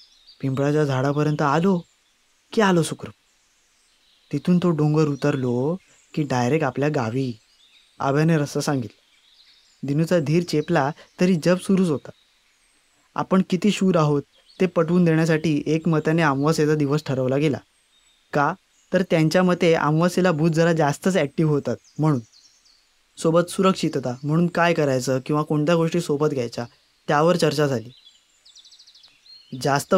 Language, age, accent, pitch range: Marathi, 20-39, native, 145-170 Hz